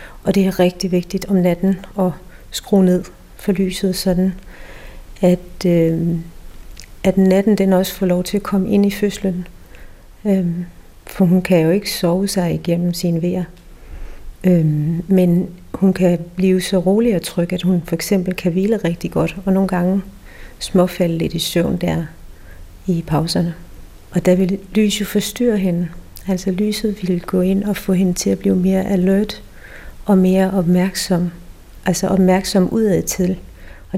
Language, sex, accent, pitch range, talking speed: Danish, female, native, 180-195 Hz, 160 wpm